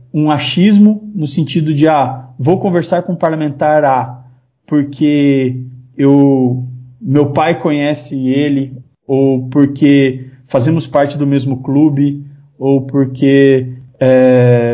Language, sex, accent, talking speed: Portuguese, male, Brazilian, 125 wpm